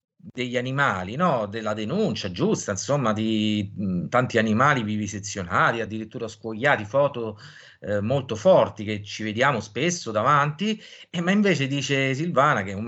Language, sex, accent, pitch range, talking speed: Italian, male, native, 110-160 Hz, 140 wpm